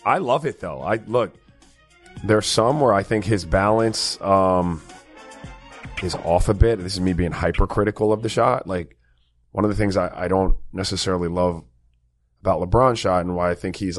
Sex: male